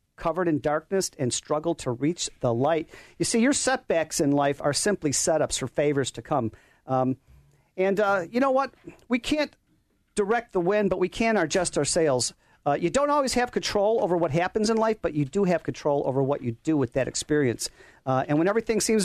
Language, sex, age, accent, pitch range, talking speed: English, male, 50-69, American, 145-210 Hz, 210 wpm